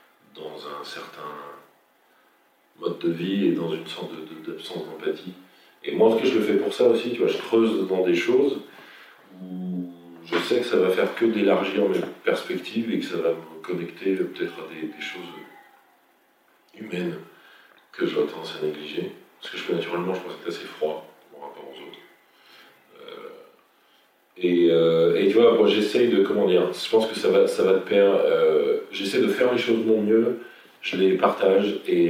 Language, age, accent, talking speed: French, 40-59, French, 200 wpm